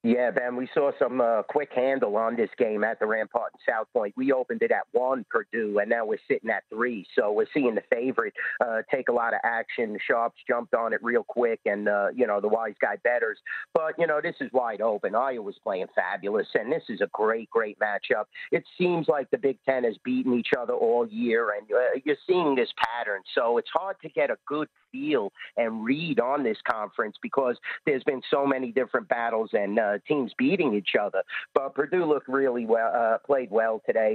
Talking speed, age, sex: 220 wpm, 50-69, male